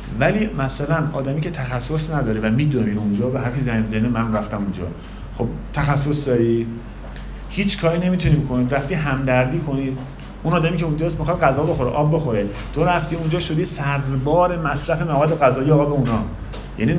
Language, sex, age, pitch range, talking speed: Persian, male, 40-59, 110-150 Hz, 160 wpm